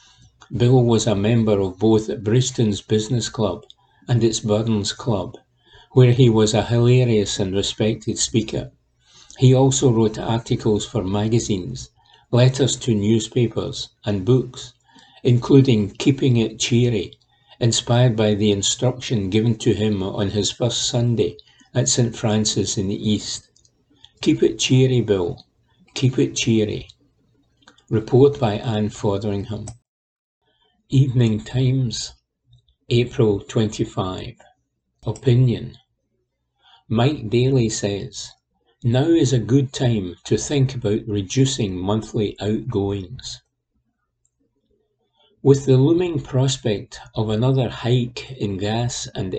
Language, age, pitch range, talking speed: English, 60-79, 105-125 Hz, 115 wpm